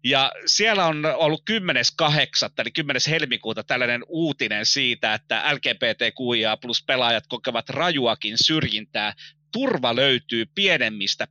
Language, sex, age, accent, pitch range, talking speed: Finnish, male, 30-49, native, 115-160 Hz, 110 wpm